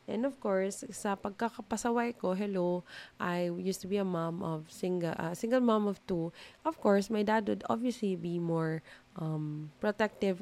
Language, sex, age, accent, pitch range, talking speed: English, female, 20-39, Filipino, 170-210 Hz, 180 wpm